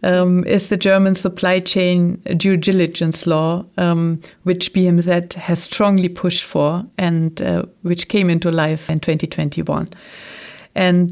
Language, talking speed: English, 135 wpm